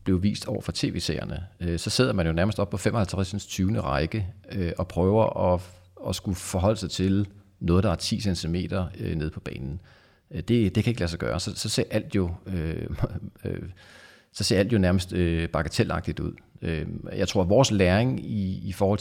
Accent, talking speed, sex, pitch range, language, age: native, 185 wpm, male, 90-105 Hz, Danish, 40-59